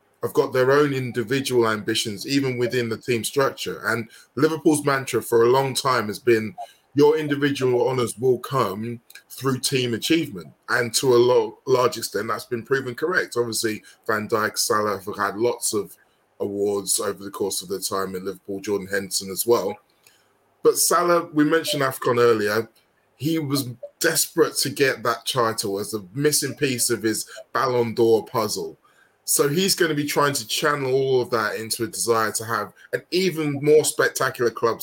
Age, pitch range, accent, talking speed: 20-39, 115-150 Hz, British, 175 wpm